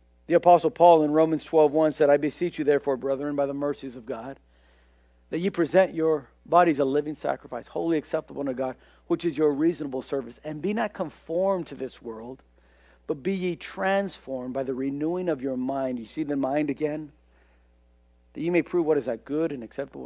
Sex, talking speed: male, 195 wpm